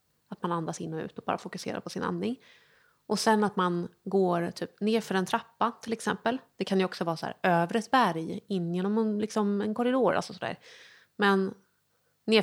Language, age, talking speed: Swedish, 30-49, 215 wpm